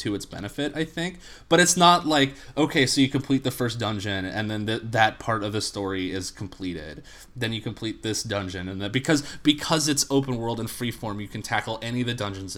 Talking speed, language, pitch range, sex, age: 225 wpm, English, 95-120 Hz, male, 20-39